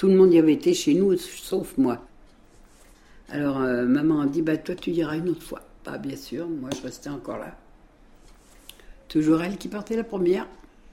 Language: French